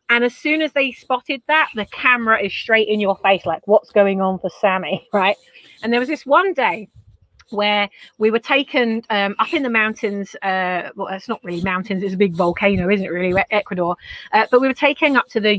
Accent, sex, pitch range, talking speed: British, female, 200-255 Hz, 225 wpm